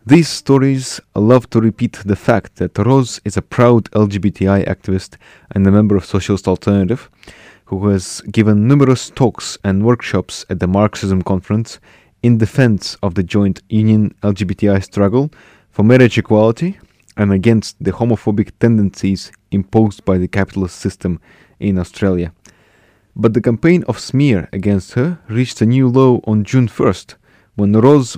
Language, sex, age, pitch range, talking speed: English, male, 20-39, 100-120 Hz, 150 wpm